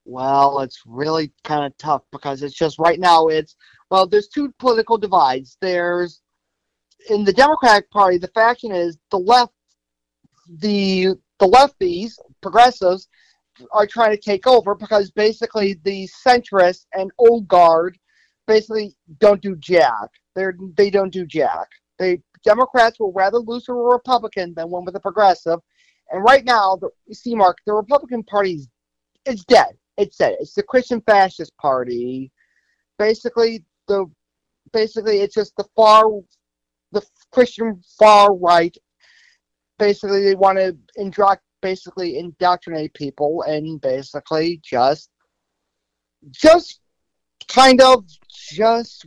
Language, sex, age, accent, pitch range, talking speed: English, male, 40-59, American, 165-230 Hz, 135 wpm